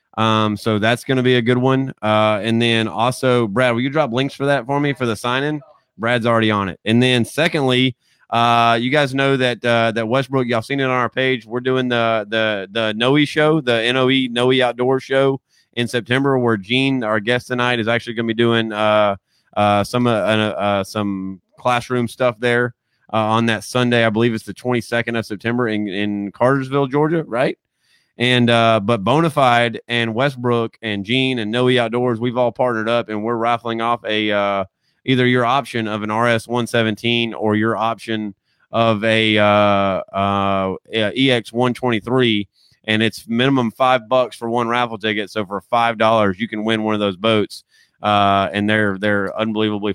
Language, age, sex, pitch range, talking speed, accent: English, 30-49, male, 105-125 Hz, 190 wpm, American